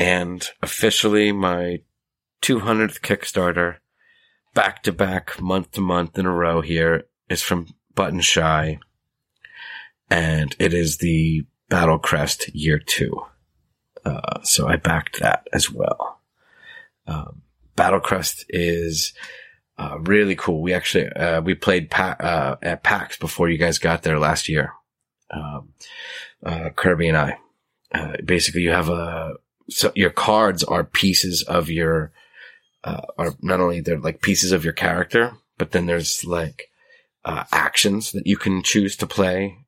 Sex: male